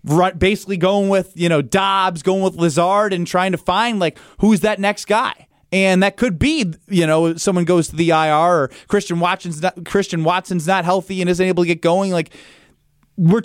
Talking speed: 200 wpm